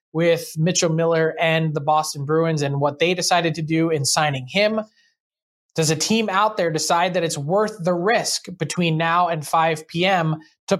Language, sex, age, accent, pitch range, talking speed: English, male, 20-39, American, 155-190 Hz, 185 wpm